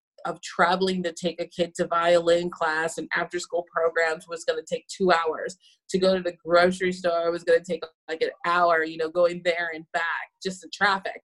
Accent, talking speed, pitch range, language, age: American, 220 wpm, 170-190 Hz, English, 20-39